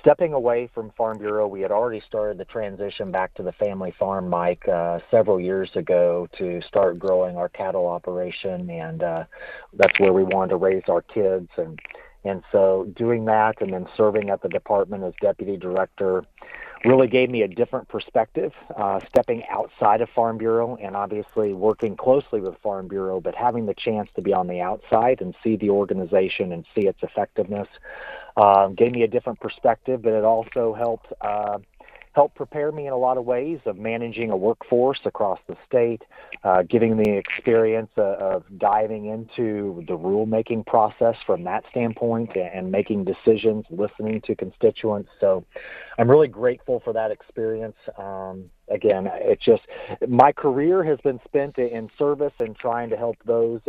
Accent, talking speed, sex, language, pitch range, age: American, 175 wpm, male, English, 95-120 Hz, 40-59